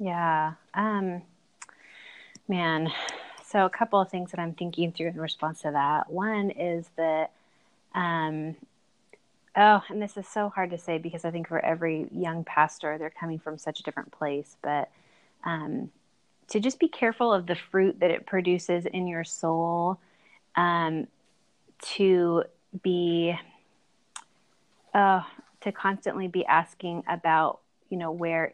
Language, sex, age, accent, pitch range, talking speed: English, female, 30-49, American, 160-185 Hz, 145 wpm